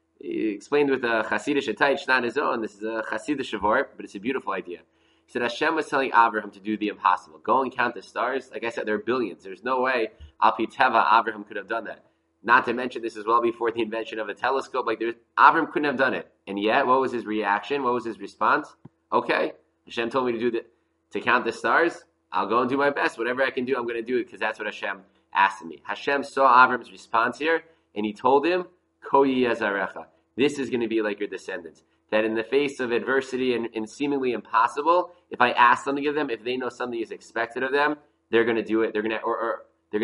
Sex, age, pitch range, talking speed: male, 20-39, 105-130 Hz, 240 wpm